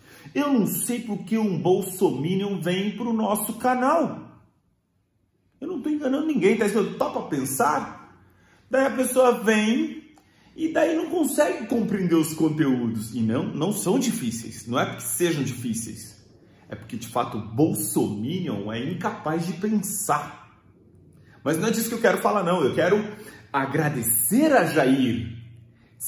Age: 40-59